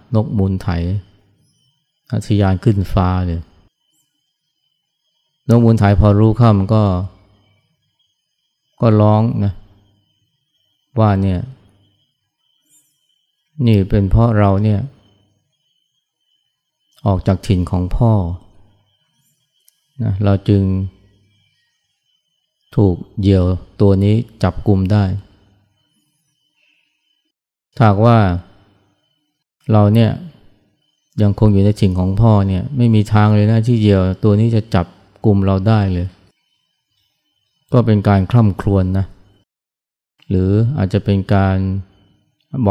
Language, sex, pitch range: Thai, male, 100-130 Hz